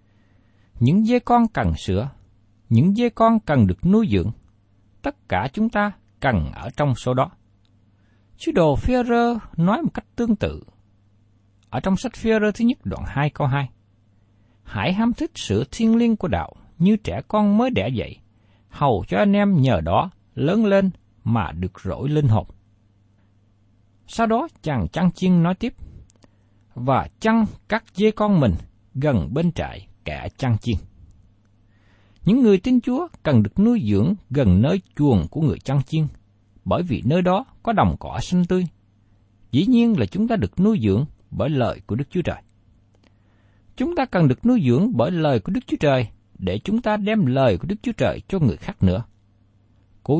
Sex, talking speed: male, 180 wpm